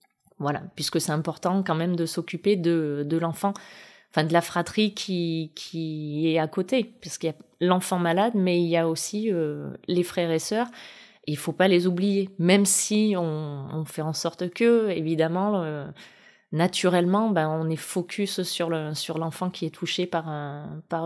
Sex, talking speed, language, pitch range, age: female, 190 wpm, French, 160-195 Hz, 20-39